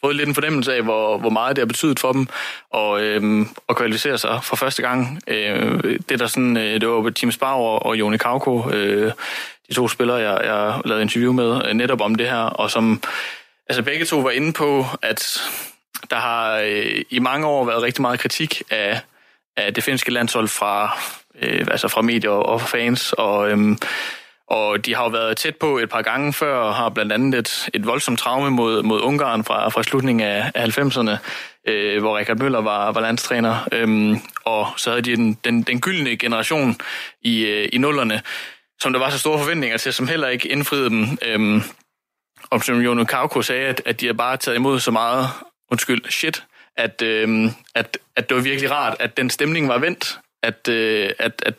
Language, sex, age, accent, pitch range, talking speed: Danish, male, 20-39, native, 110-130 Hz, 200 wpm